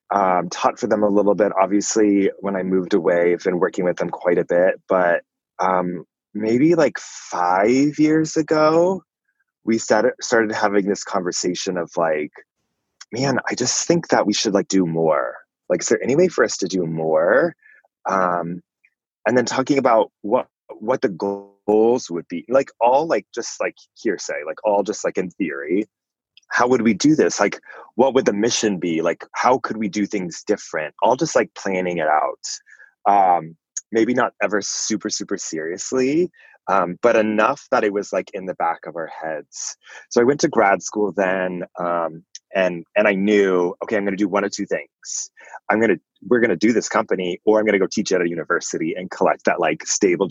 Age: 20-39